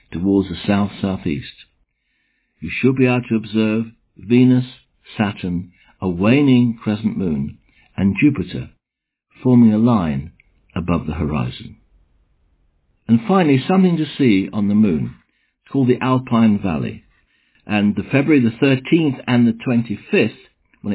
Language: English